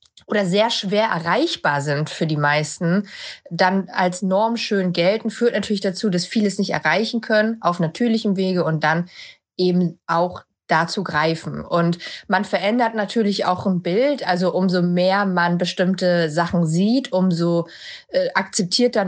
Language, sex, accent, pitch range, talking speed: German, female, German, 175-220 Hz, 150 wpm